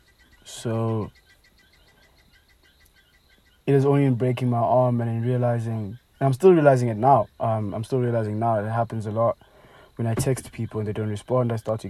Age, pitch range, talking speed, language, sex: 20-39, 105-125 Hz, 190 wpm, English, male